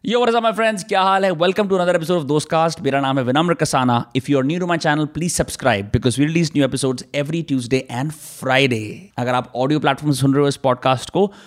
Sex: male